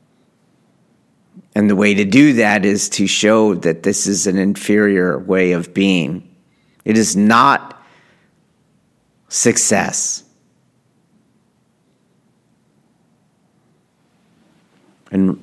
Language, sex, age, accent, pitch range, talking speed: English, male, 40-59, American, 90-110 Hz, 85 wpm